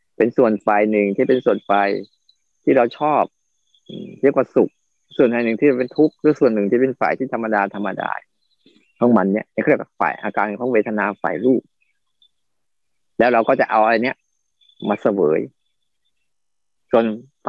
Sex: male